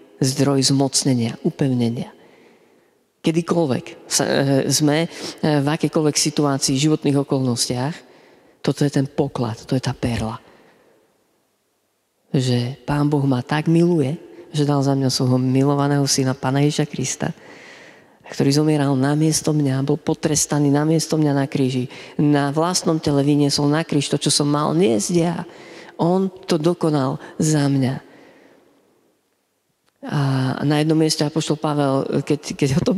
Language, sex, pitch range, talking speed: Slovak, female, 135-170 Hz, 135 wpm